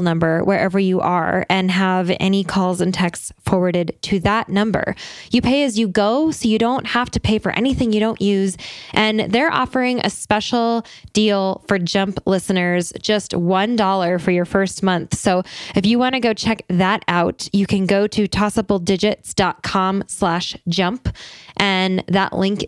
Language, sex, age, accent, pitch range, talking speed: English, female, 10-29, American, 185-225 Hz, 165 wpm